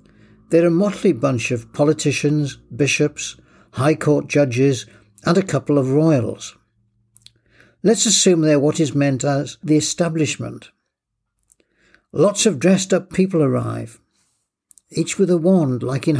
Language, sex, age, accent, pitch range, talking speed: English, male, 60-79, British, 130-175 Hz, 135 wpm